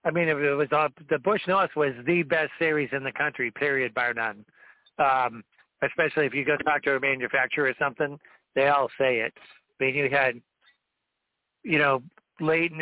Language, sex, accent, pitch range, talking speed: English, male, American, 130-155 Hz, 185 wpm